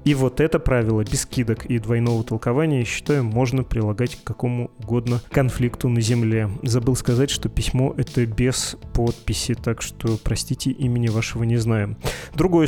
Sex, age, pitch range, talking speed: male, 20-39, 115-135 Hz, 155 wpm